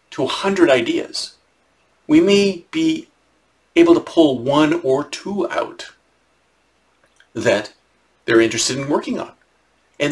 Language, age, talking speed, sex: English, 50-69, 125 wpm, male